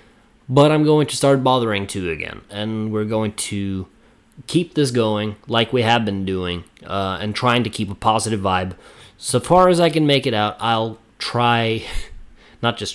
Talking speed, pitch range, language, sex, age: 185 wpm, 100-125 Hz, English, male, 20-39